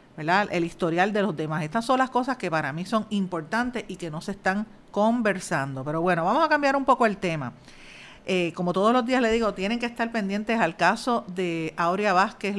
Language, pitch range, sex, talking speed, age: Spanish, 165-205 Hz, female, 220 wpm, 50-69